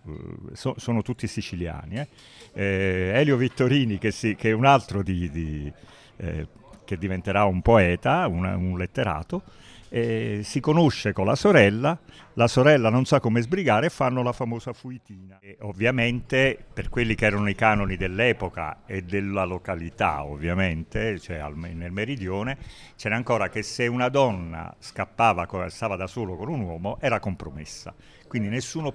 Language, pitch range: Italian, 100-125 Hz